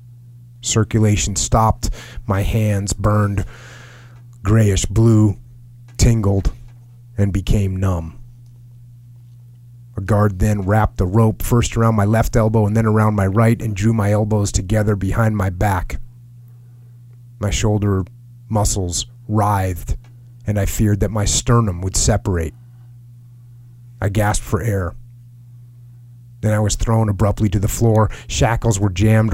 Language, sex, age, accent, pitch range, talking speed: English, male, 30-49, American, 100-120 Hz, 125 wpm